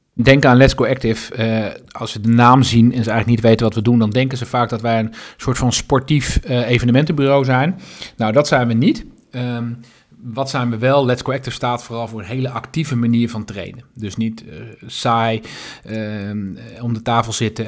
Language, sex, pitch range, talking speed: Dutch, male, 110-130 Hz, 215 wpm